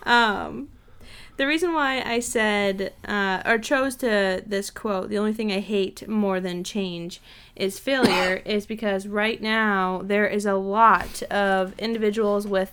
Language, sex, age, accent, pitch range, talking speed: English, female, 20-39, American, 195-235 Hz, 155 wpm